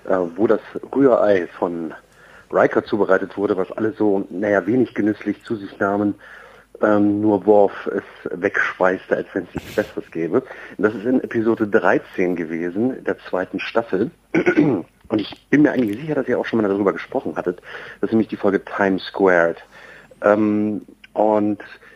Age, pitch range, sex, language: 40-59, 100-115 Hz, male, German